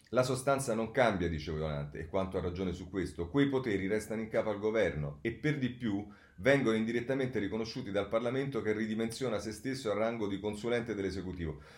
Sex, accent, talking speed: male, native, 190 wpm